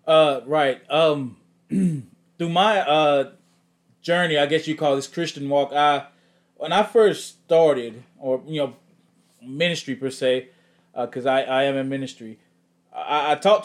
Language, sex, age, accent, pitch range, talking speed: English, male, 20-39, American, 140-170 Hz, 155 wpm